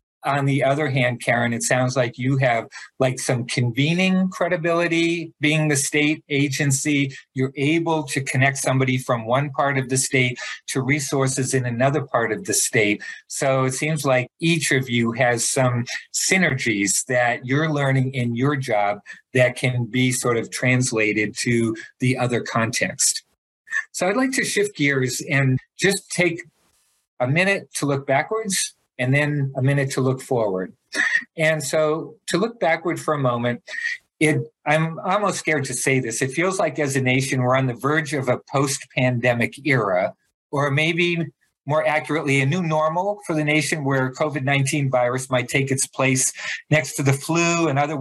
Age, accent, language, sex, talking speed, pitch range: 50-69, American, English, male, 170 wpm, 125-155 Hz